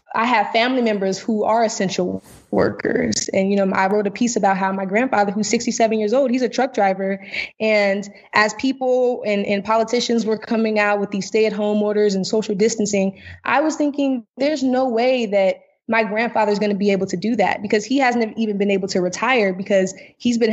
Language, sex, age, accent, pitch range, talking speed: English, female, 20-39, American, 190-220 Hz, 210 wpm